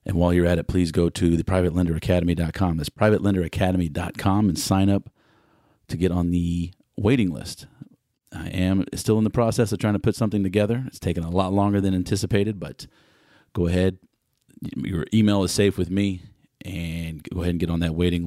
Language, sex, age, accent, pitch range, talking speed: English, male, 40-59, American, 85-100 Hz, 185 wpm